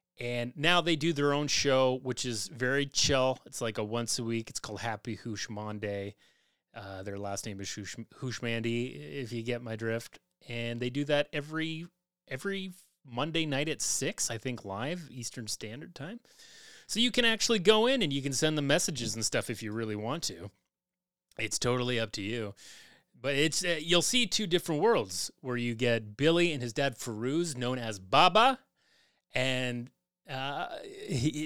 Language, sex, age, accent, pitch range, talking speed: English, male, 30-49, American, 120-170 Hz, 180 wpm